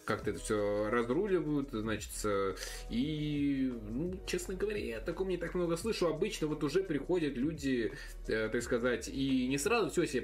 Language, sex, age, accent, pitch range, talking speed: Russian, male, 20-39, native, 110-165 Hz, 160 wpm